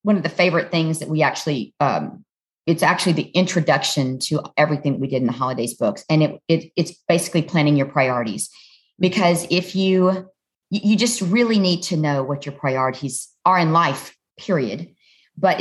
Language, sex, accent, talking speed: English, female, American, 175 wpm